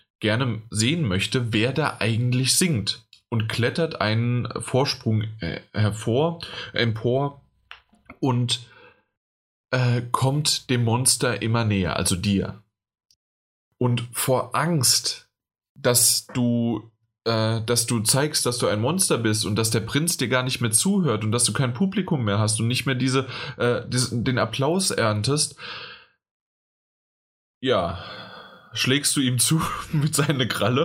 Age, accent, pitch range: 20-39, German, 110-140 Hz